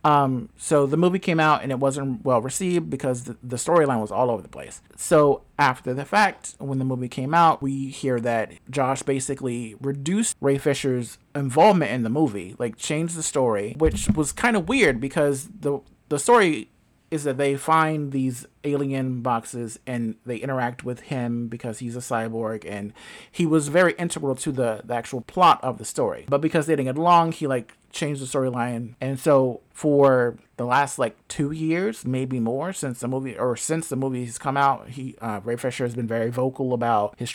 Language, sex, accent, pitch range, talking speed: English, male, American, 120-150 Hz, 200 wpm